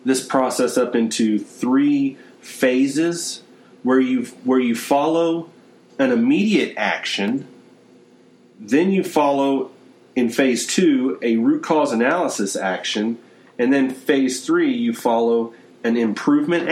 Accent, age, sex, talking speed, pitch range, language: American, 40-59, male, 120 wpm, 115-160 Hz, English